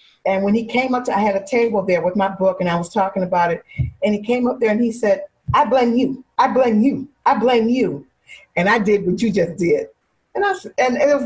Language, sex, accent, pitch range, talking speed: English, female, American, 200-255 Hz, 260 wpm